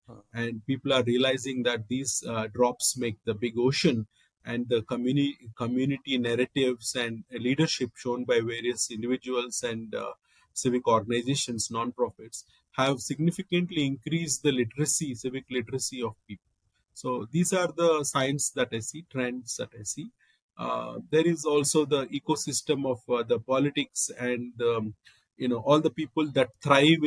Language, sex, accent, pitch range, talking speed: English, male, Indian, 120-140 Hz, 150 wpm